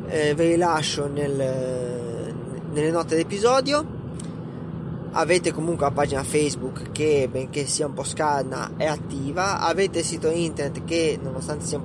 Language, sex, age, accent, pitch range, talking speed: Italian, male, 20-39, native, 150-185 Hz, 145 wpm